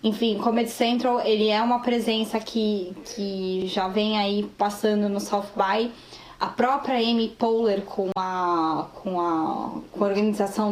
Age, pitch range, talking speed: 10-29, 195-230 Hz, 150 wpm